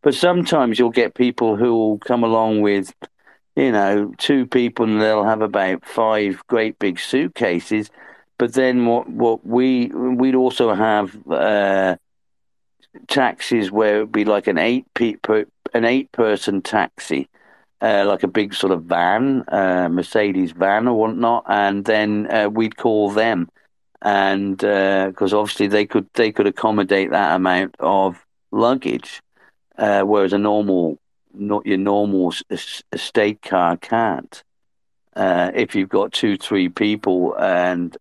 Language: English